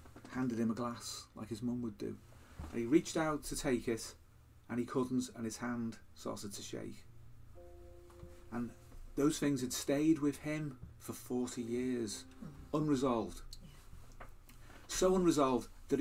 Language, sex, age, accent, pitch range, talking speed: English, male, 40-59, British, 115-140 Hz, 145 wpm